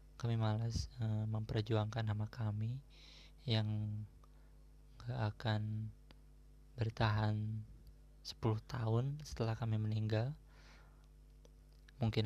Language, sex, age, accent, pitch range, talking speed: Indonesian, male, 20-39, native, 105-115 Hz, 80 wpm